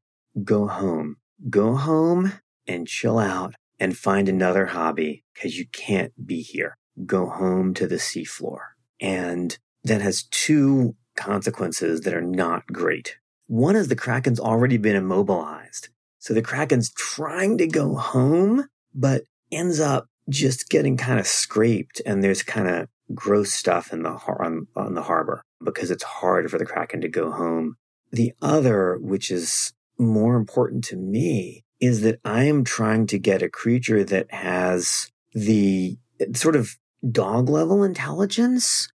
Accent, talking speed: American, 155 wpm